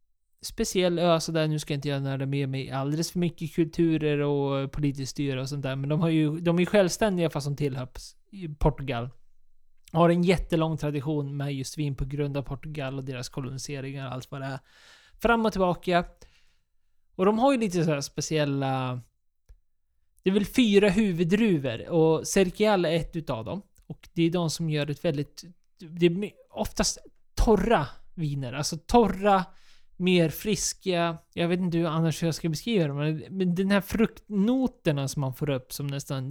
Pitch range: 140-175 Hz